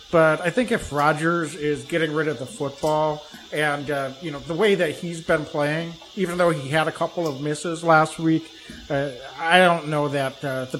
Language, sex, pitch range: English, male, 140-170 Hz